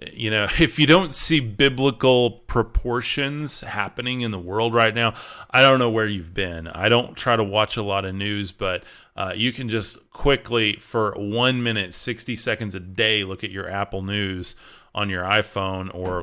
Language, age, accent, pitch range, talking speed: English, 30-49, American, 100-125 Hz, 190 wpm